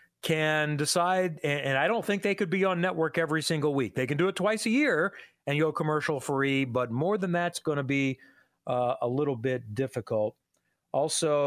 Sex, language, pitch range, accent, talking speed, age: male, English, 135-170 Hz, American, 200 wpm, 40-59